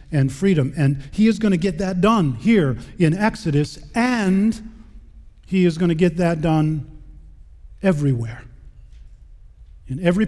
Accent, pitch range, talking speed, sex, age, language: American, 125-160 Hz, 140 wpm, male, 40-59, English